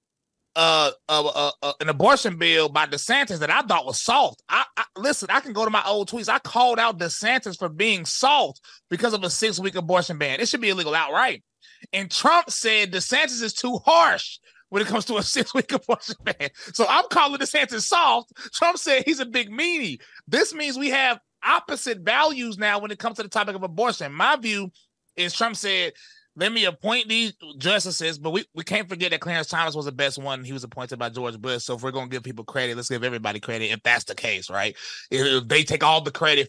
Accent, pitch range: American, 140-220 Hz